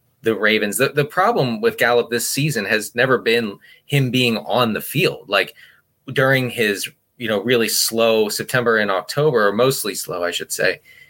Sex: male